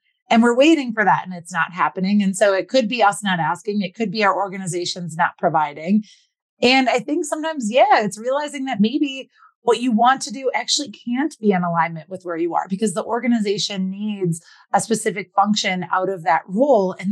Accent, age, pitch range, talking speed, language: American, 30-49, 185-235 Hz, 205 wpm, English